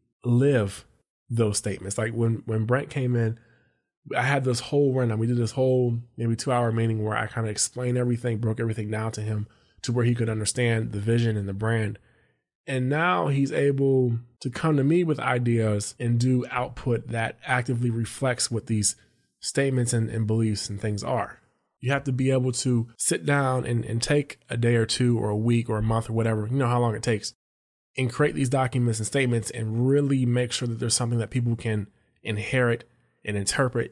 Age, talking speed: 20-39, 210 wpm